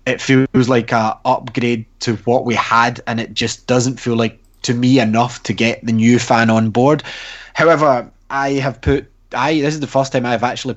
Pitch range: 105-130 Hz